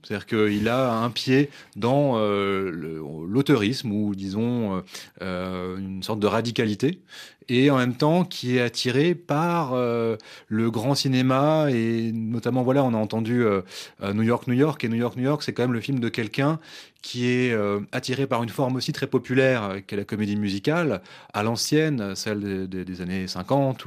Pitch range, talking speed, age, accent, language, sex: 105-135 Hz, 180 wpm, 30-49, French, French, male